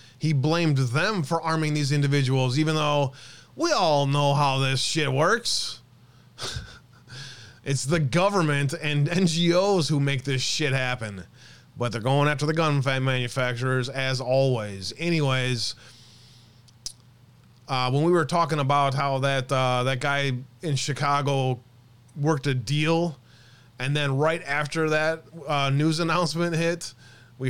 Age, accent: 20-39, American